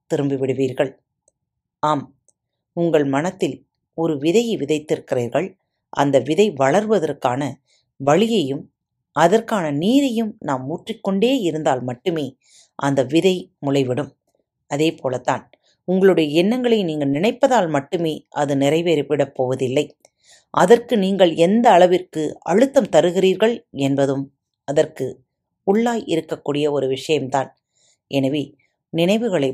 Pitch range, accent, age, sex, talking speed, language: 135-185 Hz, native, 30-49, female, 80 wpm, Tamil